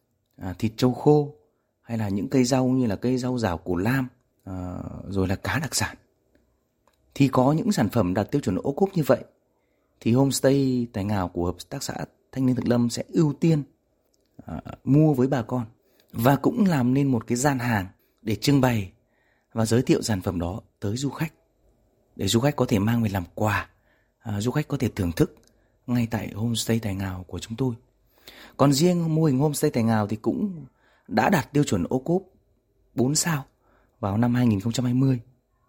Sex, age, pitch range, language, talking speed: male, 30-49, 110-135 Hz, Vietnamese, 190 wpm